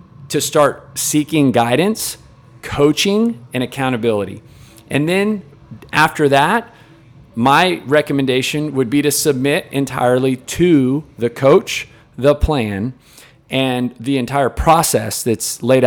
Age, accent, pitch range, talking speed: 40-59, American, 120-150 Hz, 110 wpm